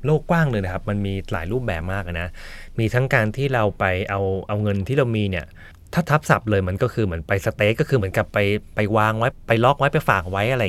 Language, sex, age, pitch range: Thai, male, 20-39, 95-120 Hz